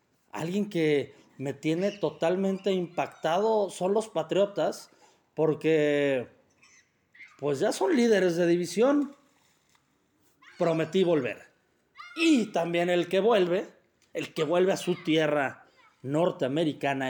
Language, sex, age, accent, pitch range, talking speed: Spanish, male, 40-59, Mexican, 140-185 Hz, 105 wpm